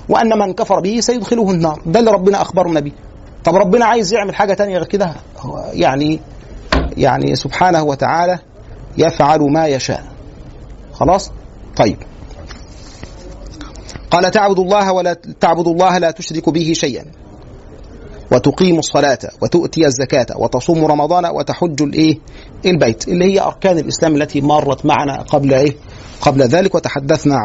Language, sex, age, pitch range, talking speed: Arabic, male, 40-59, 140-180 Hz, 130 wpm